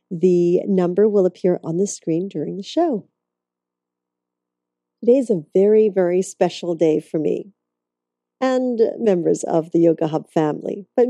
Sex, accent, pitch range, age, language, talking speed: female, American, 160-225 Hz, 40-59, English, 145 wpm